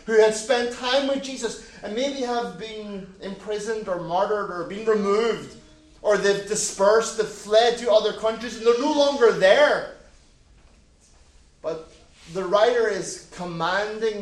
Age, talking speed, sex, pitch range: 30-49, 145 wpm, male, 180-250 Hz